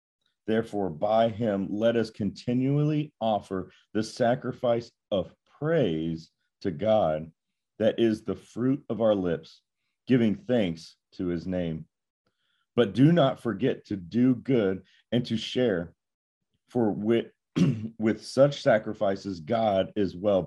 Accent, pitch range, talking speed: American, 95-120 Hz, 125 wpm